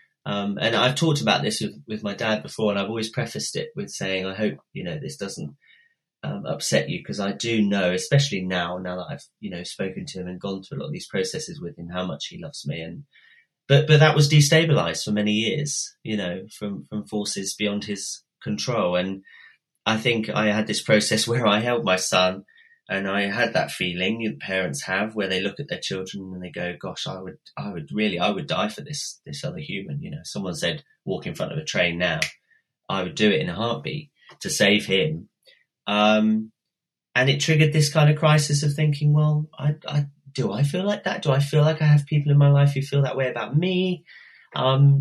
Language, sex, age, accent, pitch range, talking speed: English, male, 30-49, British, 100-150 Hz, 230 wpm